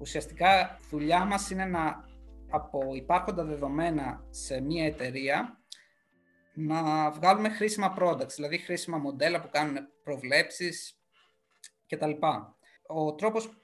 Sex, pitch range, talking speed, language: male, 150-180 Hz, 105 wpm, Greek